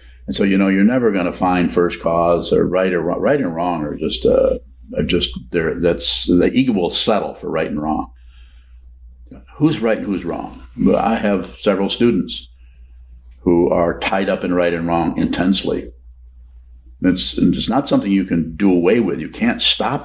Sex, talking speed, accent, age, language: male, 190 wpm, American, 50-69, English